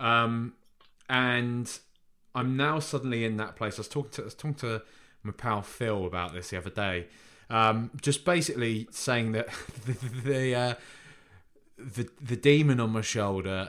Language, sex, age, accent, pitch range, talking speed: English, male, 20-39, British, 100-130 Hz, 165 wpm